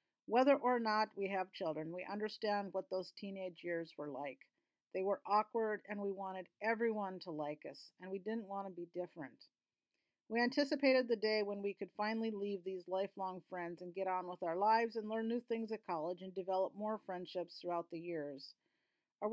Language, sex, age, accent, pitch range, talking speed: English, female, 40-59, American, 185-230 Hz, 195 wpm